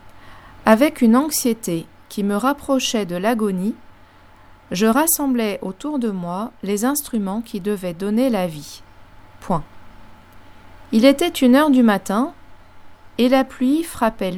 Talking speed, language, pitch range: 130 wpm, French, 150-230 Hz